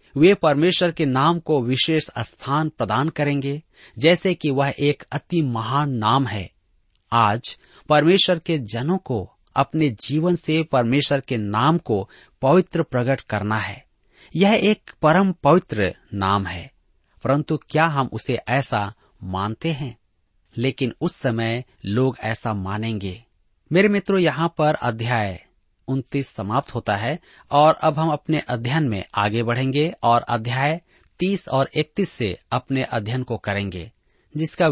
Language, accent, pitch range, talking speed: Hindi, native, 115-160 Hz, 135 wpm